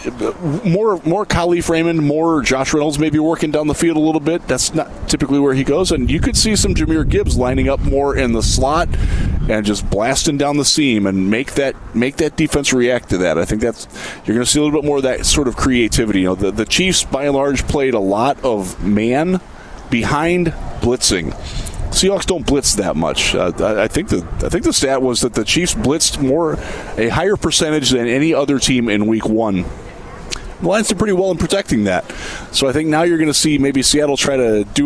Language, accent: English, American